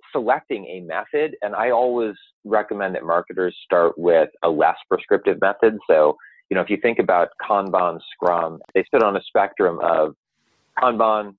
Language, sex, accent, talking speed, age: English, male, American, 165 wpm, 30-49